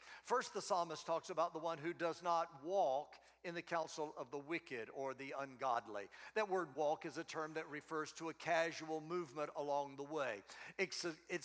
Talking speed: 195 wpm